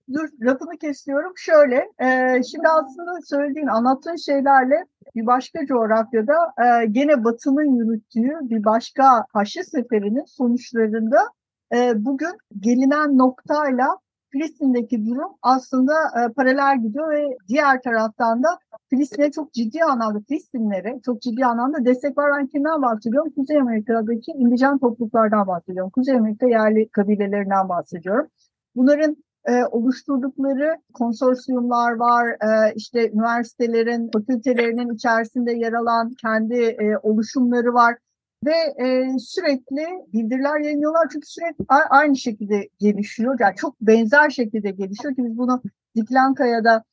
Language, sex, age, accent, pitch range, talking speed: Turkish, female, 50-69, native, 225-285 Hz, 115 wpm